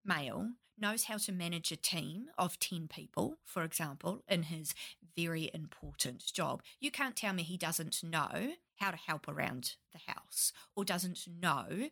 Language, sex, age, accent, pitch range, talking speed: English, female, 40-59, Australian, 165-230 Hz, 165 wpm